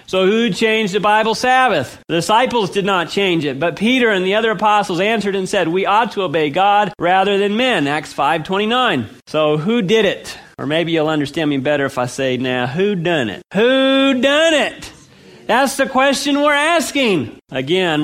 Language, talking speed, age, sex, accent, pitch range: English, 195 wpm, 40-59, male, American, 150-210 Hz